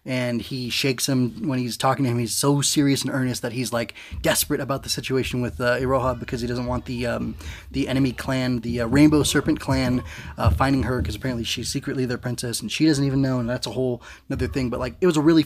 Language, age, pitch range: English, 20-39, 120-140 Hz